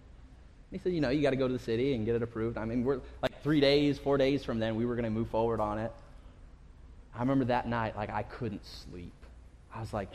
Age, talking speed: 30-49, 260 wpm